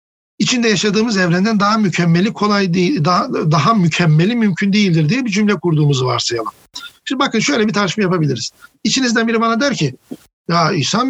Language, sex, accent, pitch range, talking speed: Turkish, male, native, 170-230 Hz, 160 wpm